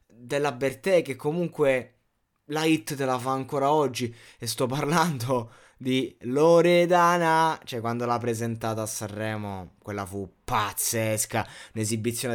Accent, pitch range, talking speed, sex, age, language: native, 110-135 Hz, 125 wpm, male, 20-39, Italian